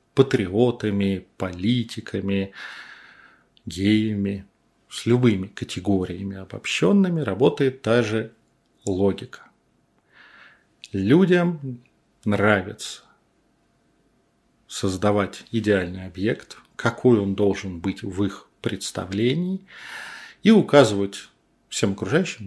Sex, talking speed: male, 70 wpm